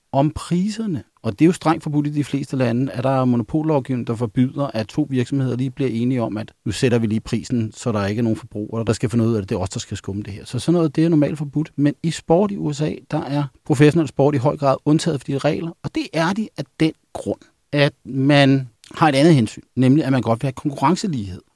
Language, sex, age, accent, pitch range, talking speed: Danish, male, 40-59, native, 115-155 Hz, 260 wpm